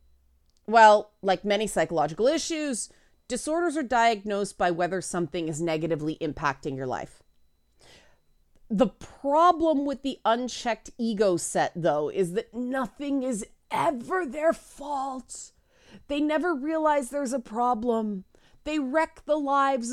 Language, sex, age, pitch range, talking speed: English, female, 30-49, 180-260 Hz, 125 wpm